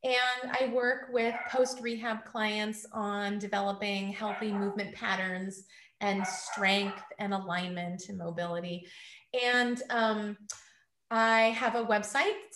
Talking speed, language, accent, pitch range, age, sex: 115 wpm, English, American, 200-250 Hz, 30-49, female